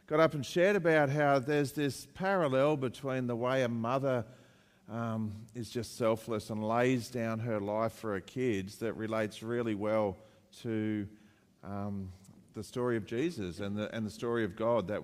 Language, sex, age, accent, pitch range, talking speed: English, male, 50-69, Australian, 110-145 Hz, 175 wpm